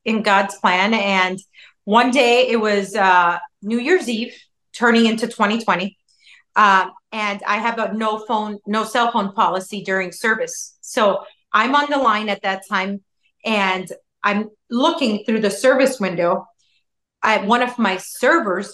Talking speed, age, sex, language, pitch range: 155 wpm, 30-49, female, English, 200-255 Hz